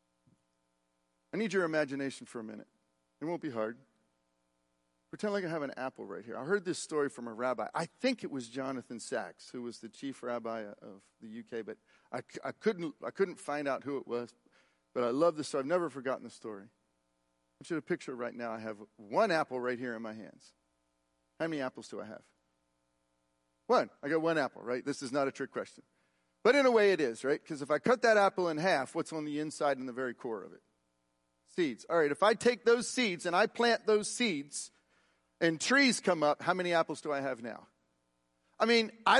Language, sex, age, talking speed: English, male, 40-59, 225 wpm